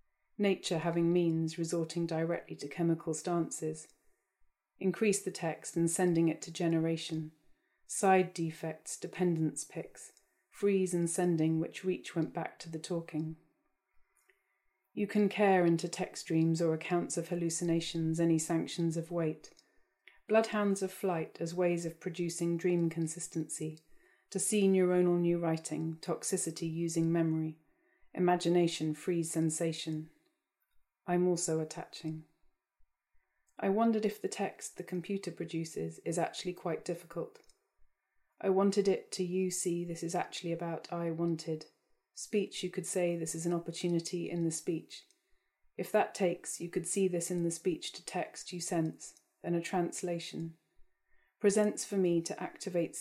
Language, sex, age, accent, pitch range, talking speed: English, female, 30-49, British, 165-185 Hz, 140 wpm